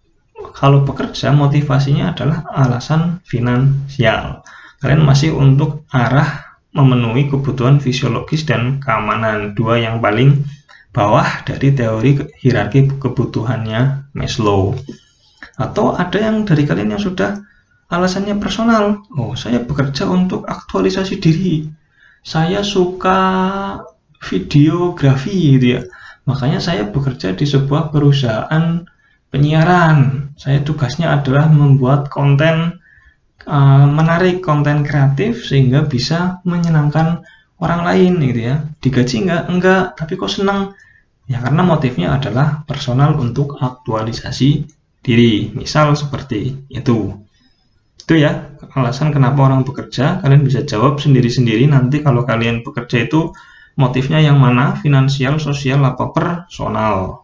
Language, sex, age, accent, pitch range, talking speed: Indonesian, male, 20-39, native, 130-160 Hz, 110 wpm